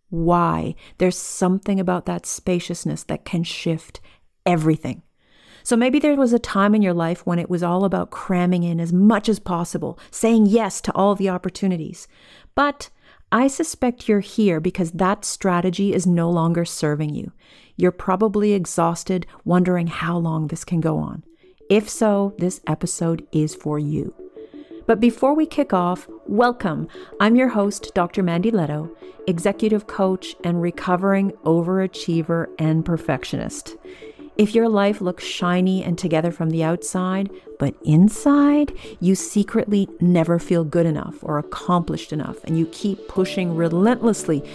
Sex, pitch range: female, 170-210 Hz